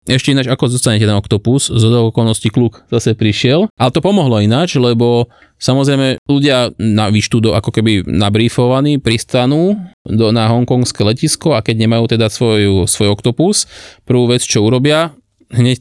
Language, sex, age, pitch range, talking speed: Slovak, male, 20-39, 105-125 Hz, 150 wpm